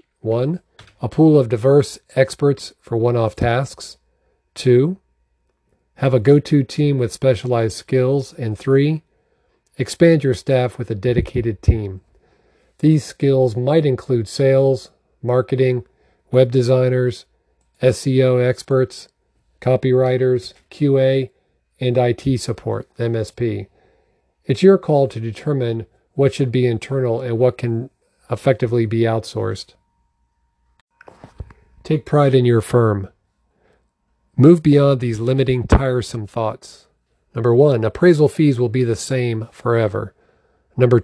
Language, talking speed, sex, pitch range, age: English, 115 wpm, male, 110-135 Hz, 40-59